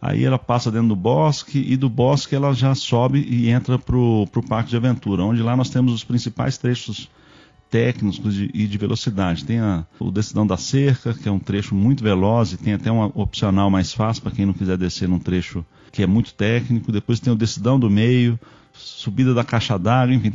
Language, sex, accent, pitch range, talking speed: Portuguese, male, Brazilian, 100-125 Hz, 205 wpm